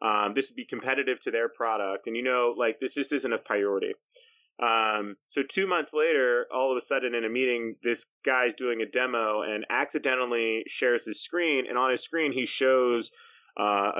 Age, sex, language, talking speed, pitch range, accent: 30-49, male, English, 195 wpm, 110-175 Hz, American